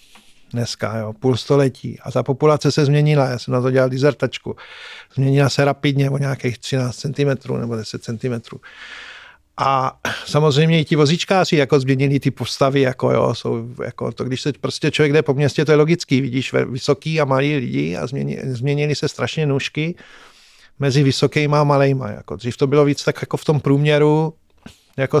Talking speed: 175 wpm